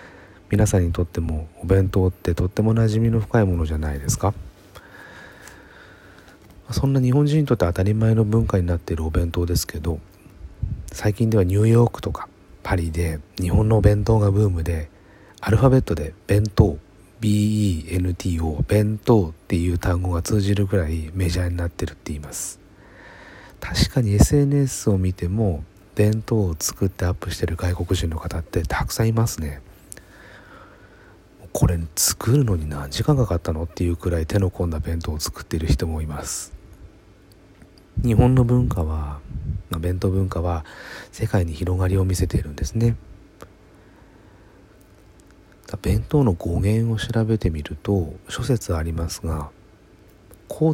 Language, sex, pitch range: Japanese, male, 85-105 Hz